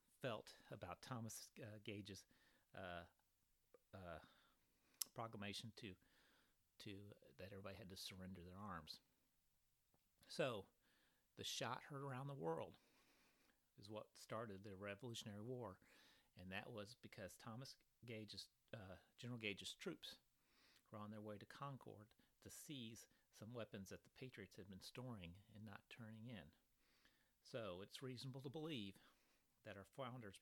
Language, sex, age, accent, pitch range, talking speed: English, male, 40-59, American, 100-120 Hz, 135 wpm